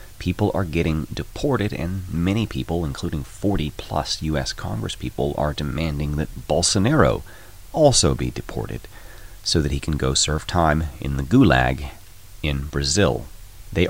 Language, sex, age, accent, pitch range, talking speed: English, male, 30-49, American, 75-100 Hz, 135 wpm